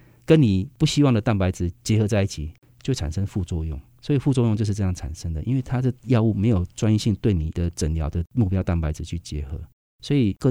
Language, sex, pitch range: Chinese, male, 85-110 Hz